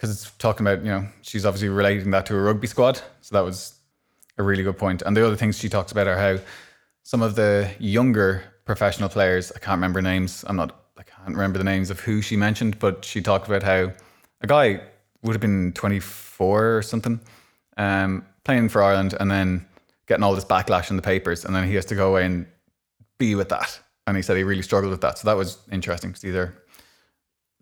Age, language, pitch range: 20-39, English, 95-105 Hz